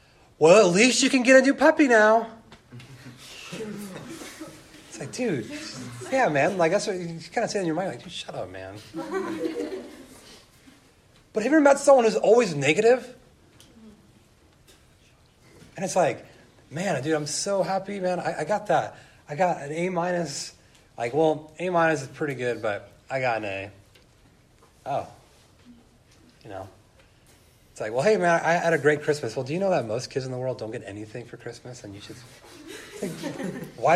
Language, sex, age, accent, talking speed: English, male, 30-49, American, 180 wpm